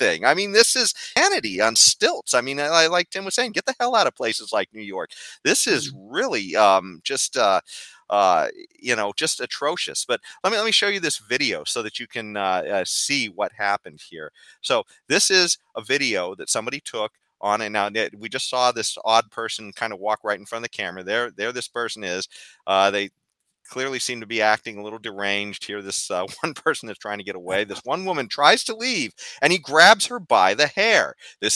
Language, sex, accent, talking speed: English, male, American, 230 wpm